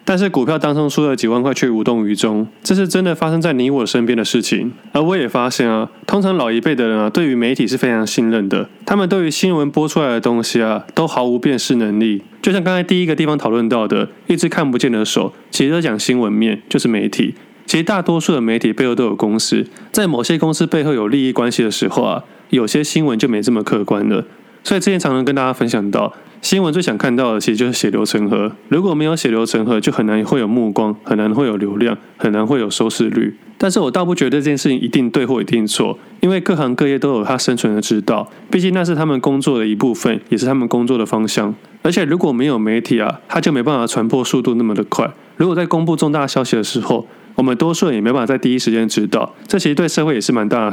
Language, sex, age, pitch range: Chinese, male, 20-39, 115-160 Hz